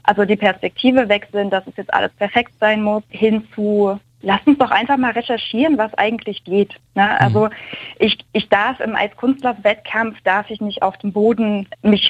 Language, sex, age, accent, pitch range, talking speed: German, female, 20-39, German, 195-225 Hz, 180 wpm